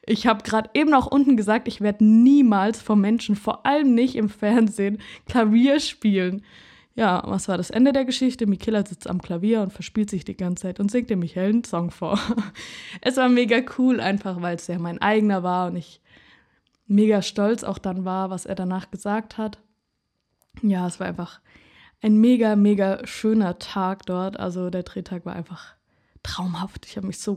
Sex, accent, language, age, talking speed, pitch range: female, German, German, 20-39, 190 wpm, 185-225 Hz